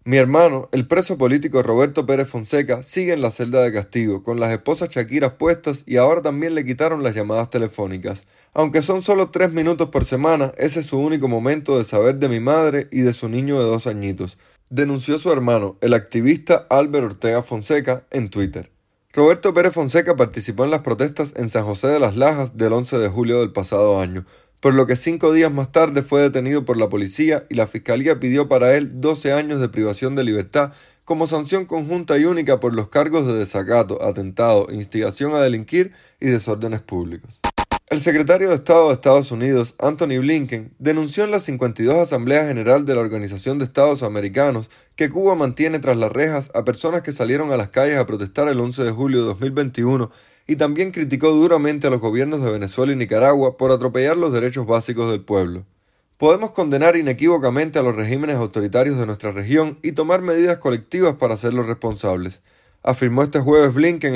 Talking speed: 190 wpm